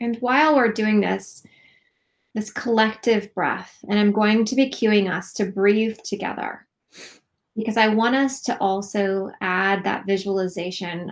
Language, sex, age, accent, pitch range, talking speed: English, female, 20-39, American, 190-220 Hz, 145 wpm